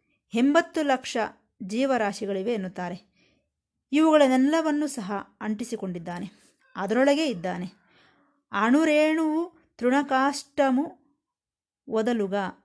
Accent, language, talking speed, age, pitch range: native, Kannada, 55 wpm, 20-39, 195-270 Hz